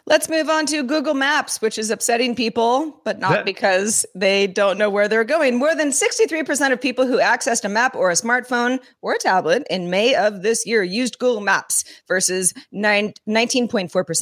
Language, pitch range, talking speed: English, 195-250 Hz, 180 wpm